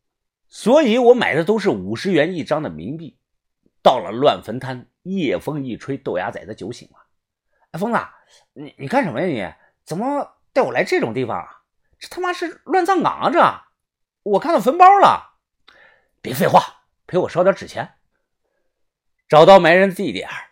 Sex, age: male, 50-69